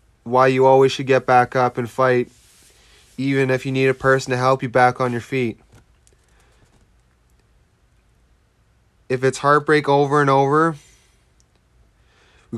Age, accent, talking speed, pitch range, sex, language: 20-39, American, 140 wpm, 125-140 Hz, male, English